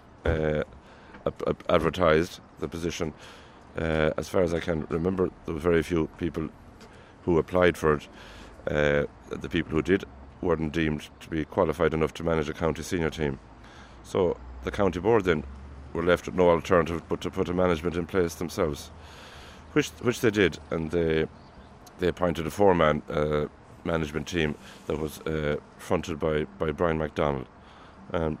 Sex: male